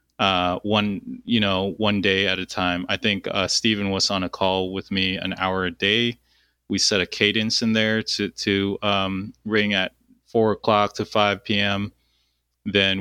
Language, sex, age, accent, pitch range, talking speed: English, male, 30-49, American, 95-110 Hz, 185 wpm